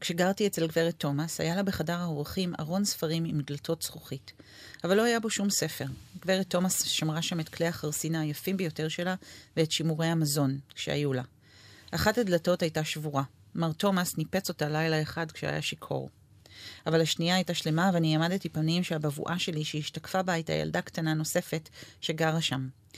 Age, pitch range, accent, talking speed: 40-59, 150-180 Hz, native, 165 wpm